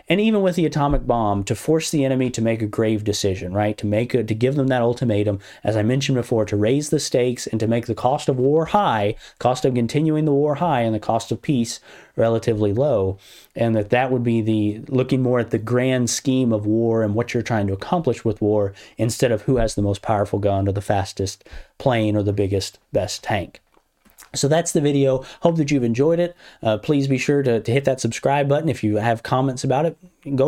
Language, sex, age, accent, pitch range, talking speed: English, male, 30-49, American, 110-140 Hz, 230 wpm